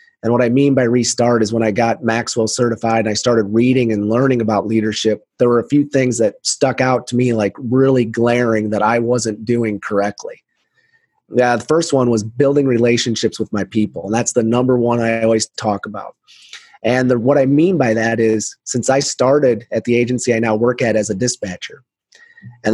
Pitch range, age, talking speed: 110-130 Hz, 30-49, 205 wpm